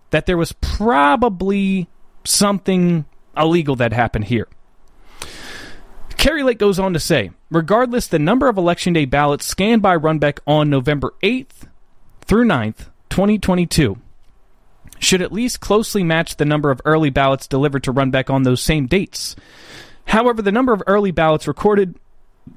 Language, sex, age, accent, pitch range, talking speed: English, male, 30-49, American, 135-200 Hz, 145 wpm